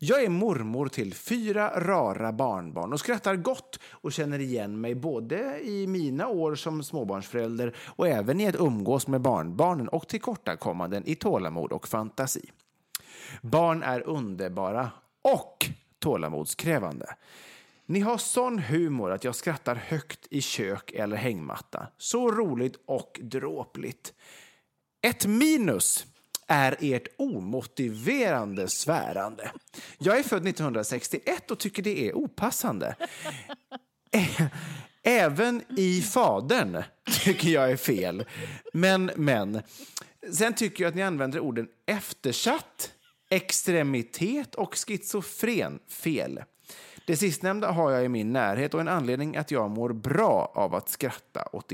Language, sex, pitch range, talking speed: English, male, 130-205 Hz, 130 wpm